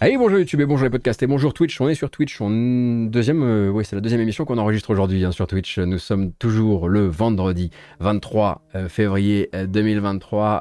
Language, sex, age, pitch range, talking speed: French, male, 20-39, 100-135 Hz, 205 wpm